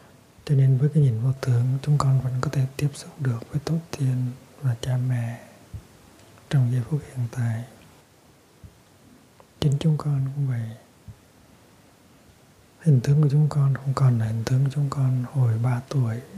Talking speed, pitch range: 170 wpm, 125-140 Hz